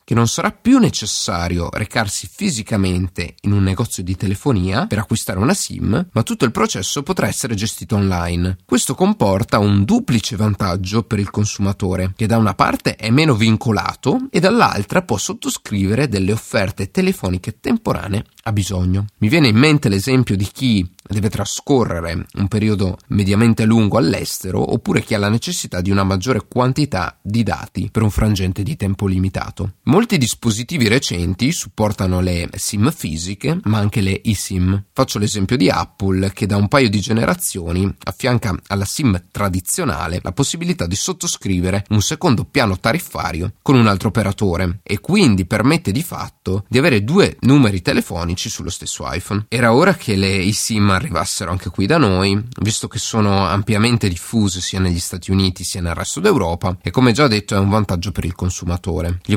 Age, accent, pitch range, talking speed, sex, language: 30-49, native, 95-115 Hz, 165 wpm, male, Italian